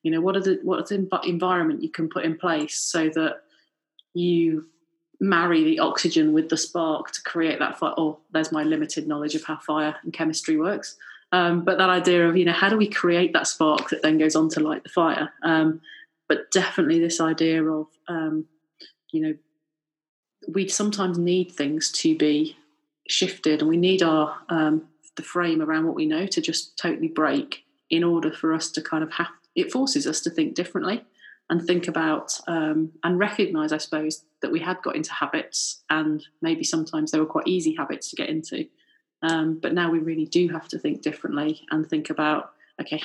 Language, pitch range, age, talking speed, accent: English, 155-210 Hz, 30-49, 200 wpm, British